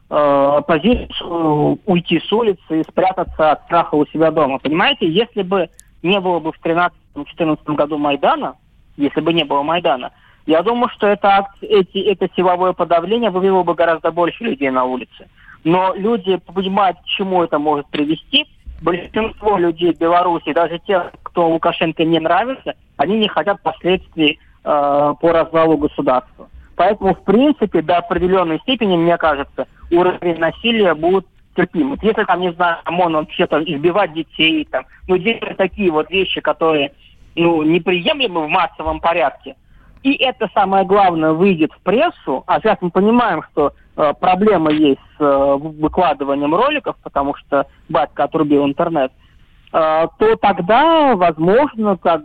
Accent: native